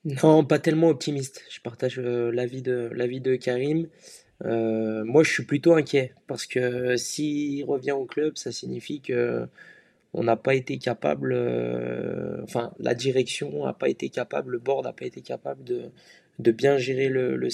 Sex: male